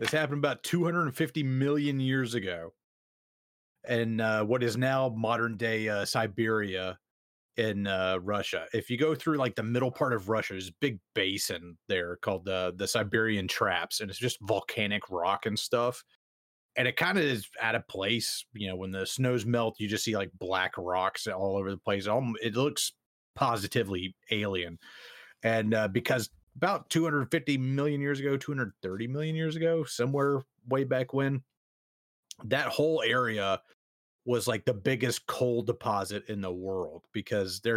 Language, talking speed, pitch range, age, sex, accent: English, 165 wpm, 100-130 Hz, 30-49, male, American